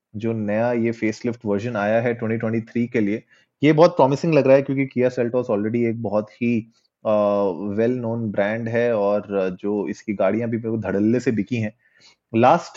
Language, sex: Hindi, male